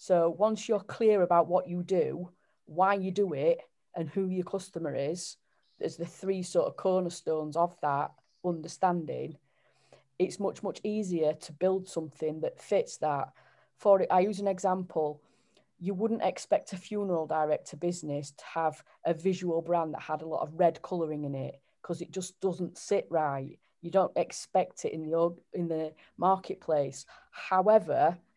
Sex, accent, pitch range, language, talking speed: female, British, 160-190 Hz, English, 165 wpm